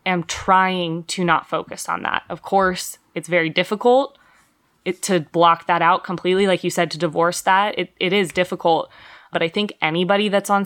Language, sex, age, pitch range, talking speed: English, female, 20-39, 170-200 Hz, 195 wpm